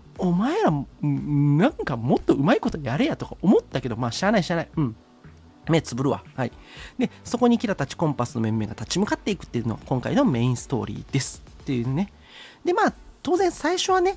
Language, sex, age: Japanese, male, 40-59